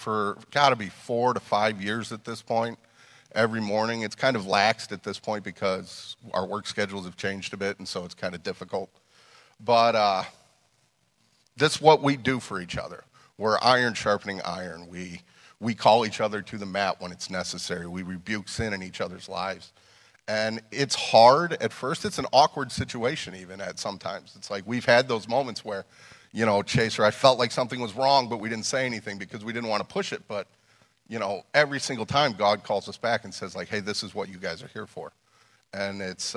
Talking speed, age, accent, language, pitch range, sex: 215 wpm, 40-59, American, English, 100-120 Hz, male